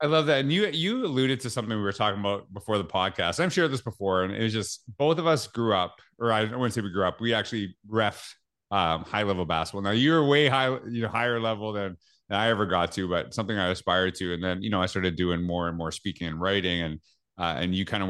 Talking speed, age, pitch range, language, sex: 265 wpm, 30-49, 100-125 Hz, English, male